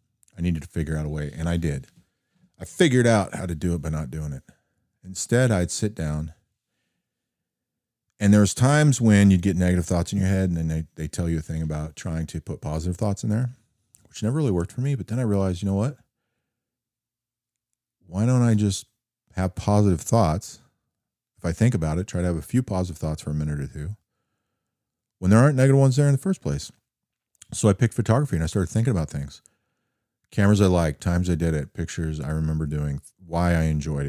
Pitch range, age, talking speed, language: 80-115 Hz, 40-59, 215 wpm, English